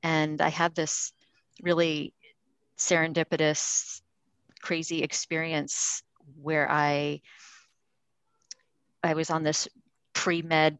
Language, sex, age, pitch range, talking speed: English, female, 40-59, 145-170 Hz, 85 wpm